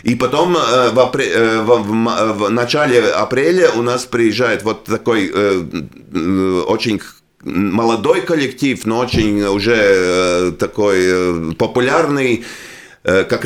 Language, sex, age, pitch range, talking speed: Russian, male, 40-59, 105-130 Hz, 105 wpm